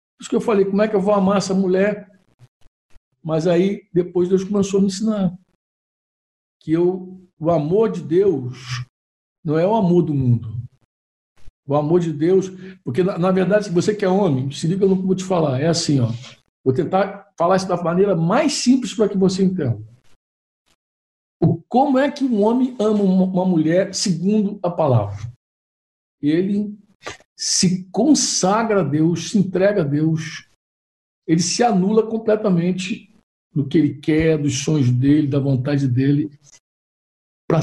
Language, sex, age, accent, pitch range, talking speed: Portuguese, male, 60-79, Brazilian, 135-195 Hz, 165 wpm